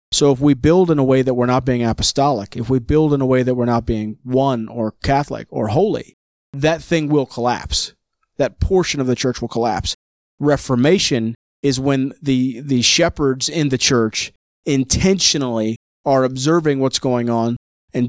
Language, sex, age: English, male, 30-49